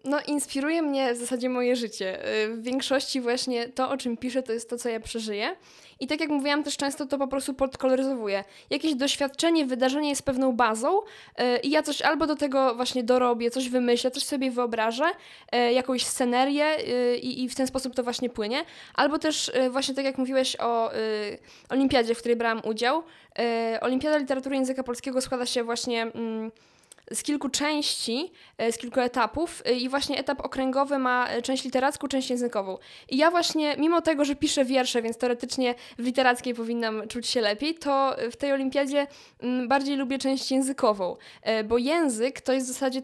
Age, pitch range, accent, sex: 10-29, 240-280 Hz, native, female